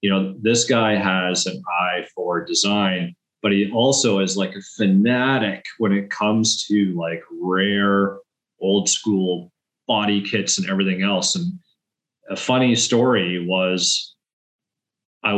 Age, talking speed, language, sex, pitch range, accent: 30-49, 135 wpm, English, male, 95-115 Hz, American